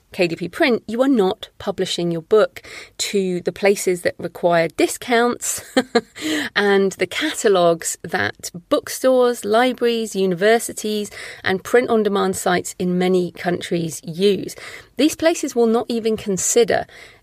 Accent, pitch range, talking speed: British, 180-235 Hz, 120 wpm